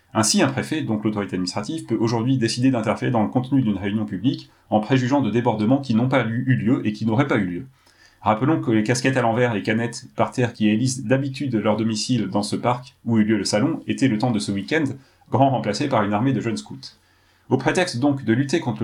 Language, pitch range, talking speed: French, 105-135 Hz, 240 wpm